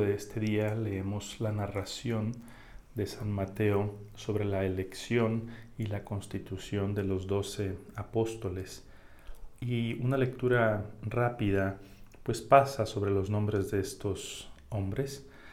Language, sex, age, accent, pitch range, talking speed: Spanish, male, 40-59, Mexican, 105-115 Hz, 120 wpm